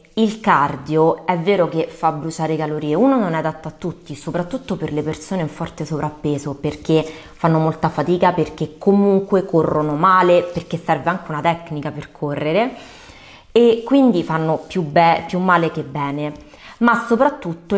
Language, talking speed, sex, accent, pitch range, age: Italian, 160 wpm, female, native, 155-185 Hz, 20-39